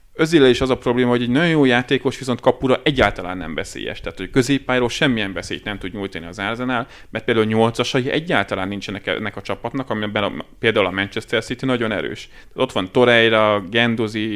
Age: 30-49